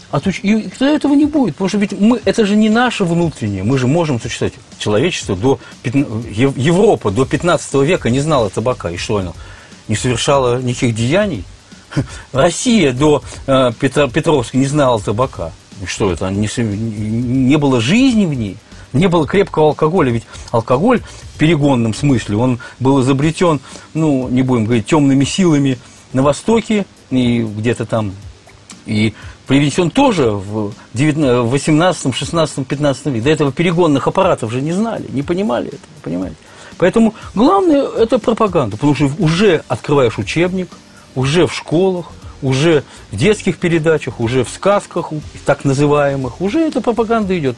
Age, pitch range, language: 40-59, 120-180 Hz, Russian